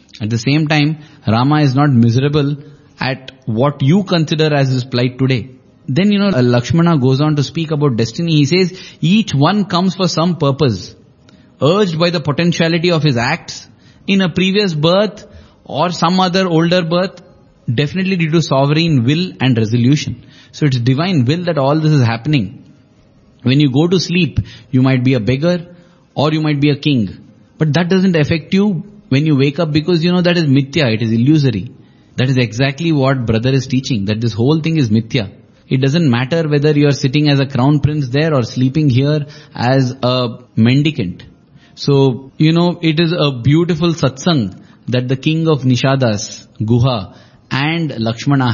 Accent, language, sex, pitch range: Indian, English, male, 125-160 Hz